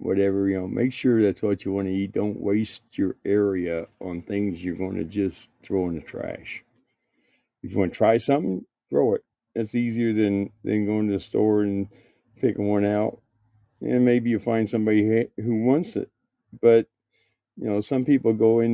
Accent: American